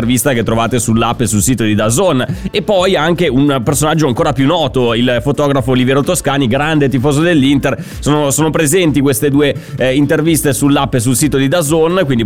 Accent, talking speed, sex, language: native, 185 wpm, male, Italian